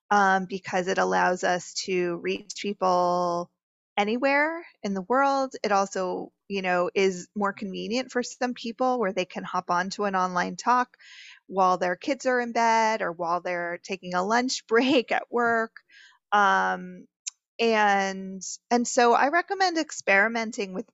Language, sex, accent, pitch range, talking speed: English, female, American, 180-230 Hz, 150 wpm